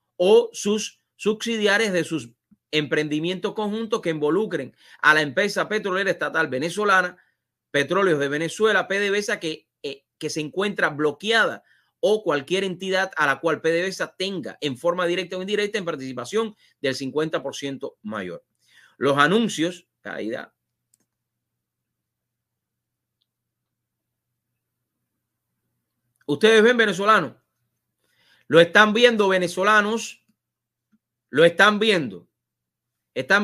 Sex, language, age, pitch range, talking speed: male, English, 30-49, 125-190 Hz, 100 wpm